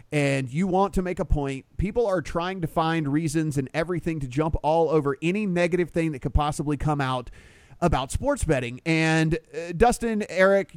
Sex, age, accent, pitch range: male, 30-49, American, 160-235 Hz